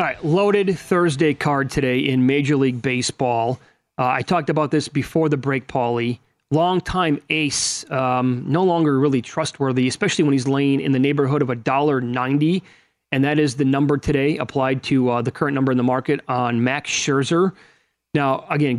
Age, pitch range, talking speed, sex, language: 30-49, 130-160 Hz, 180 wpm, male, English